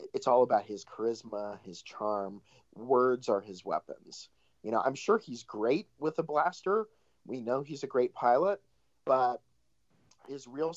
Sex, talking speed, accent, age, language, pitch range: male, 160 wpm, American, 40-59, English, 100-130 Hz